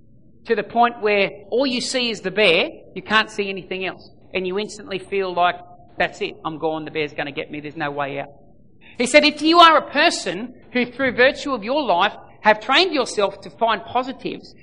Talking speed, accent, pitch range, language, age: 220 wpm, Australian, 205-295 Hz, English, 40-59